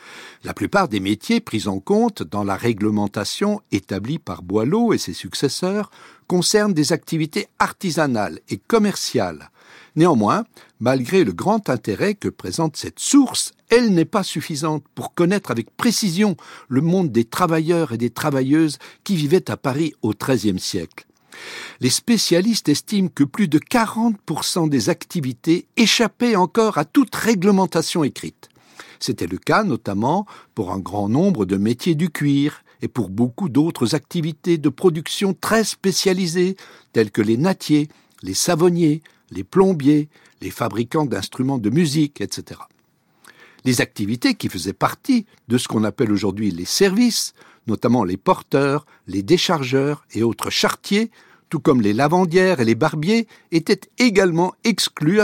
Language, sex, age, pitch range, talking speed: French, male, 60-79, 120-195 Hz, 145 wpm